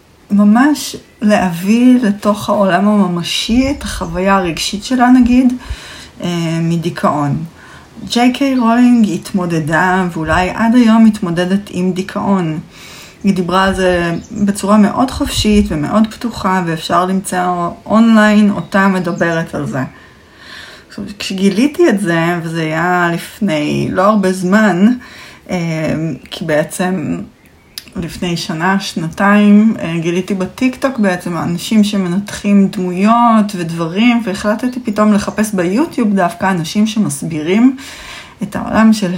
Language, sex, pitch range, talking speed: Hebrew, female, 175-215 Hz, 105 wpm